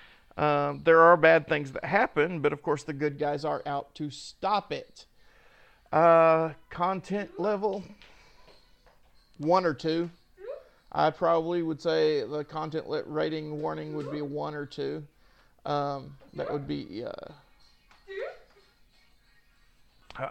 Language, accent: English, American